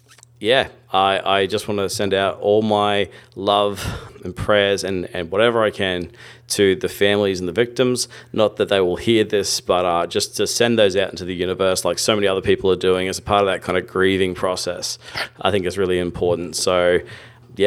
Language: English